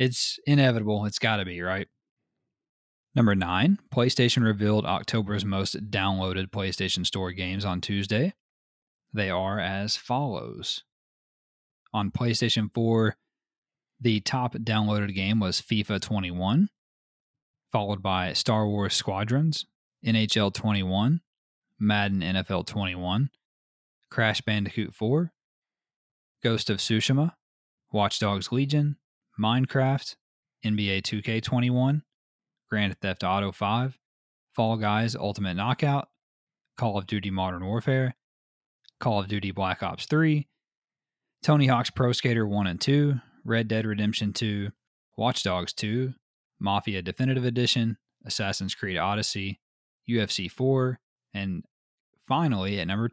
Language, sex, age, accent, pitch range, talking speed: English, male, 20-39, American, 100-125 Hz, 115 wpm